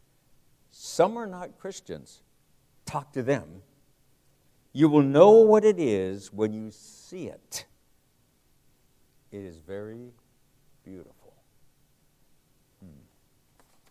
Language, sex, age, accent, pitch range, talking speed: English, male, 60-79, American, 115-145 Hz, 95 wpm